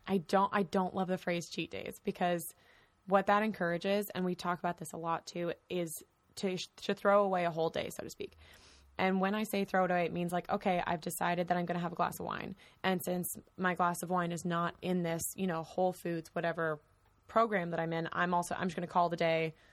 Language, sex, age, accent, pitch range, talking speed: English, female, 20-39, American, 170-190 Hz, 250 wpm